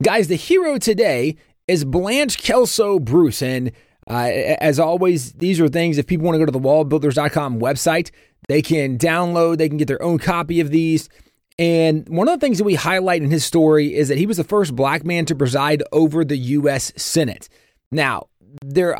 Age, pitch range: 30-49, 145-180 Hz